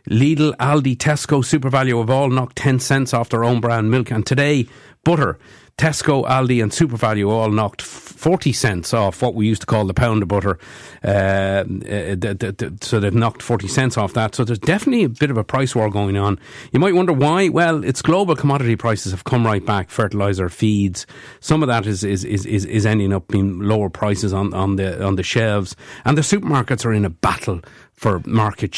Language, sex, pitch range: English, male, 100-130 Hz